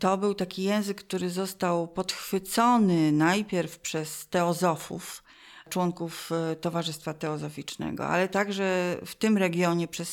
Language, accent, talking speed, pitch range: Polish, native, 115 wpm, 175-215 Hz